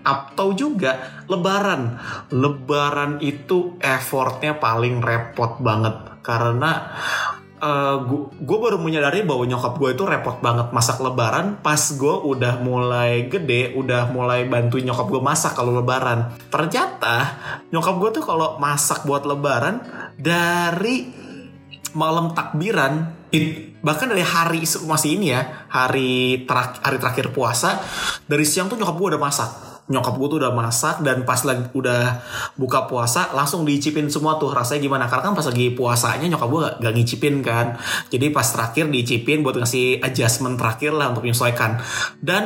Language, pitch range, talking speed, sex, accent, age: Indonesian, 125-155 Hz, 150 wpm, male, native, 20-39